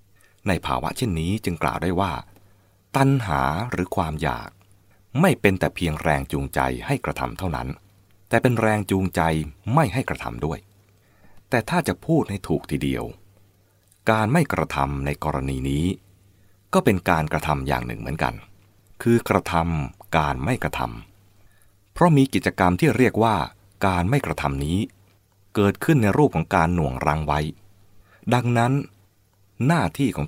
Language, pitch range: English, 80-105 Hz